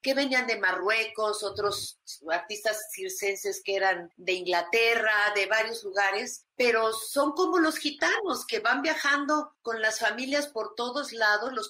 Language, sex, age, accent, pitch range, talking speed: Spanish, female, 40-59, Mexican, 210-265 Hz, 150 wpm